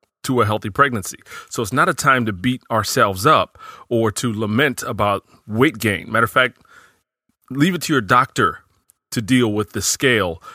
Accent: American